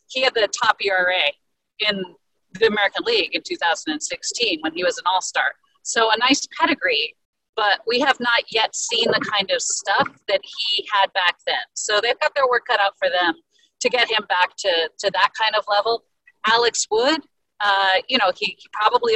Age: 40-59